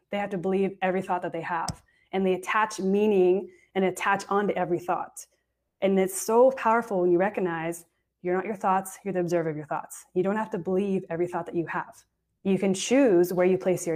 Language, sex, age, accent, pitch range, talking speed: English, female, 20-39, American, 180-210 Hz, 225 wpm